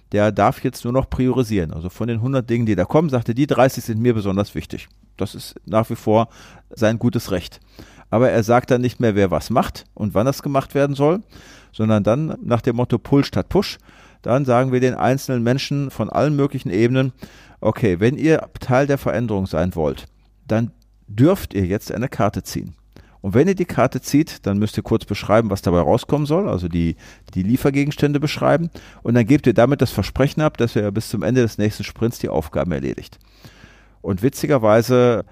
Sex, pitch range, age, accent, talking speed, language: male, 100-130 Hz, 40-59, German, 200 wpm, German